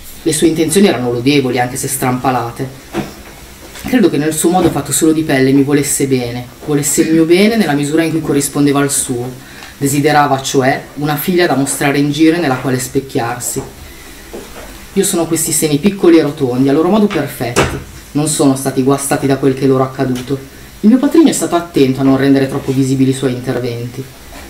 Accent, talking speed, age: native, 195 wpm, 30-49